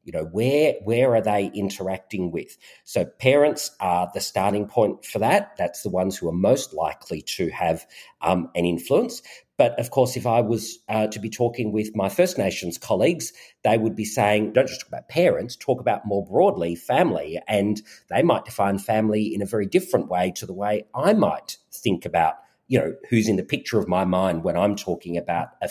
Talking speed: 205 wpm